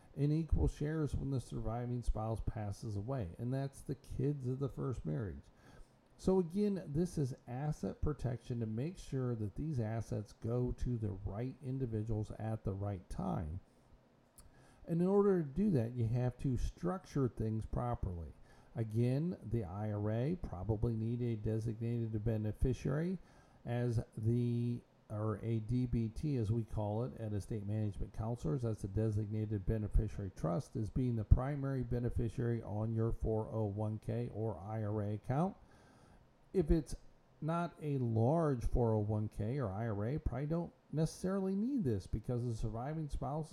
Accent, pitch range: American, 110-140 Hz